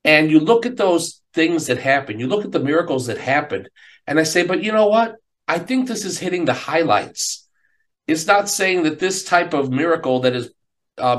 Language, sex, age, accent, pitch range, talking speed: English, male, 50-69, American, 125-170 Hz, 215 wpm